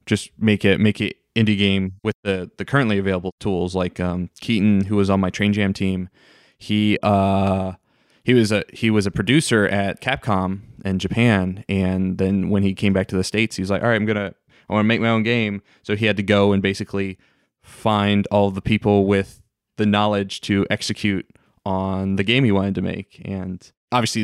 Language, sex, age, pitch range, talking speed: English, male, 20-39, 95-110 Hz, 210 wpm